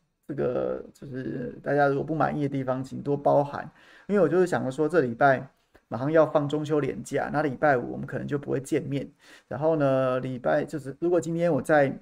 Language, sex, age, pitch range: Chinese, male, 30-49, 135-165 Hz